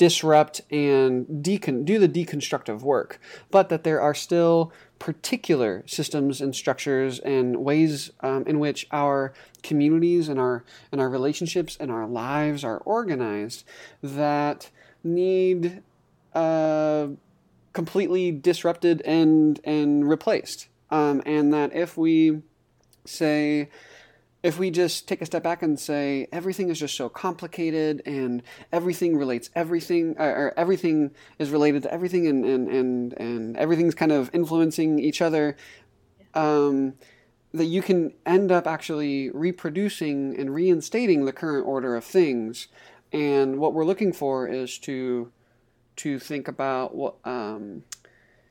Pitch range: 135-170 Hz